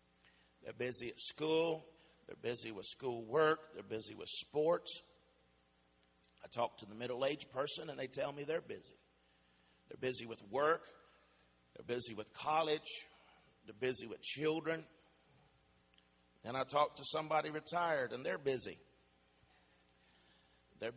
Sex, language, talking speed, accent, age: male, English, 135 wpm, American, 50-69